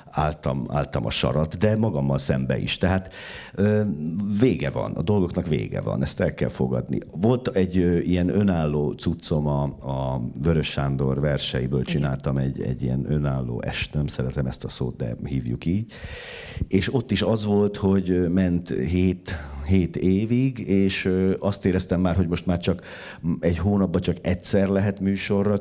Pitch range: 75-95 Hz